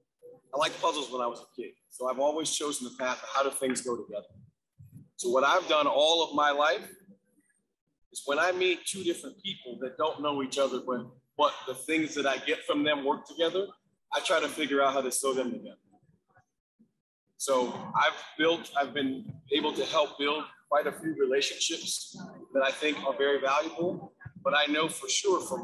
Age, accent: 30-49, American